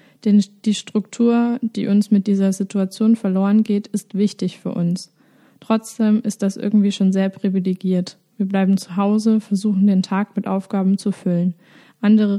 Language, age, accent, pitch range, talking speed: German, 20-39, German, 195-215 Hz, 160 wpm